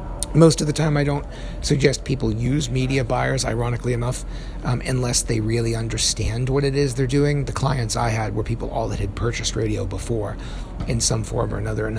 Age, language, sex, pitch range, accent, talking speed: 40-59, English, male, 110-135 Hz, American, 205 wpm